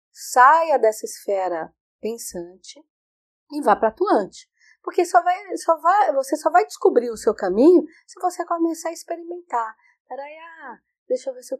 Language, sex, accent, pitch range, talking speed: Portuguese, female, Brazilian, 225-335 Hz, 165 wpm